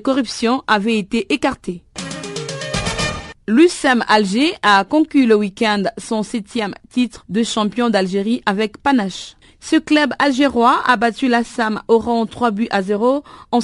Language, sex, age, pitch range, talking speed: French, female, 40-59, 215-255 Hz, 135 wpm